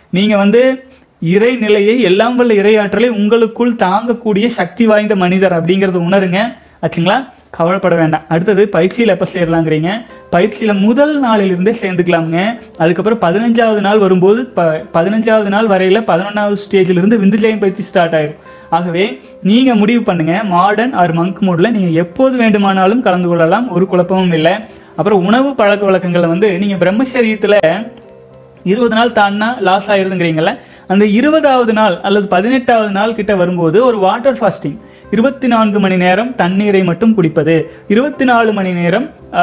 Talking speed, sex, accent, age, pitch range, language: 135 wpm, male, native, 30-49, 180-225 Hz, Tamil